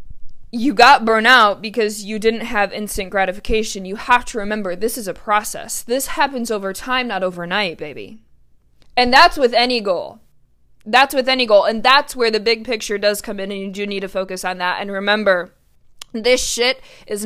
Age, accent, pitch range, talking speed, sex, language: 20-39, American, 205-250 Hz, 190 wpm, female, English